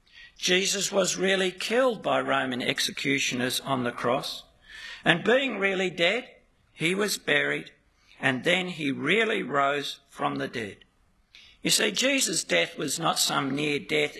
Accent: Australian